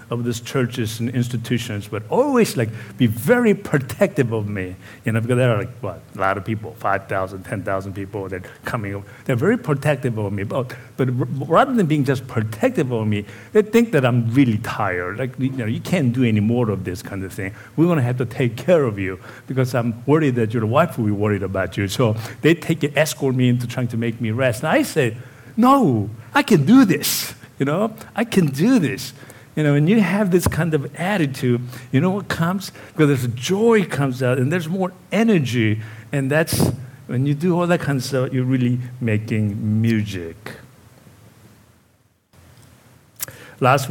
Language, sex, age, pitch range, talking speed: English, male, 60-79, 110-145 Hz, 205 wpm